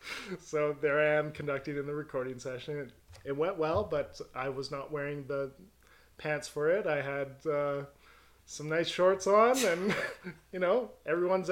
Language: English